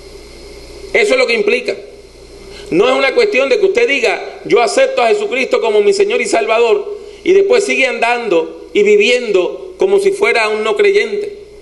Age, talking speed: 40-59, 175 wpm